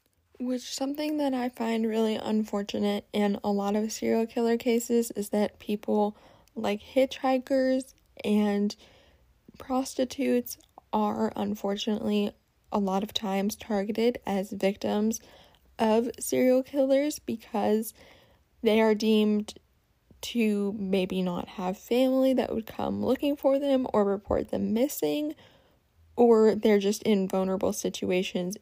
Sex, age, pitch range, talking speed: female, 10-29, 190-235 Hz, 120 wpm